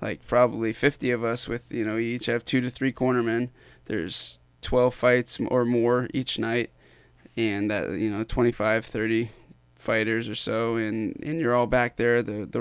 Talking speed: 185 wpm